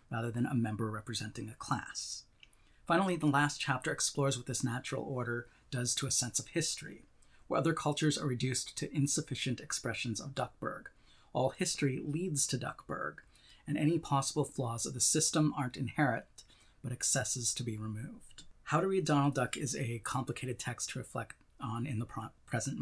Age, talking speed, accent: 30-49, 175 wpm, American